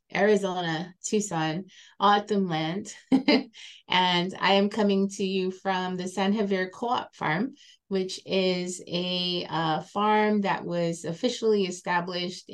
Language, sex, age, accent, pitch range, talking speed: English, female, 20-39, American, 165-200 Hz, 120 wpm